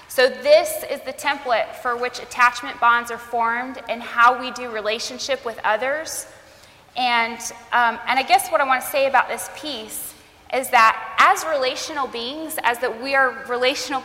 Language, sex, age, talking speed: English, female, 20-39, 175 wpm